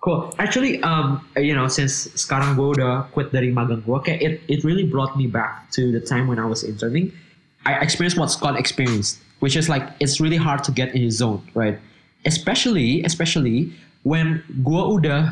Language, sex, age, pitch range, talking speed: Indonesian, male, 20-39, 135-165 Hz, 190 wpm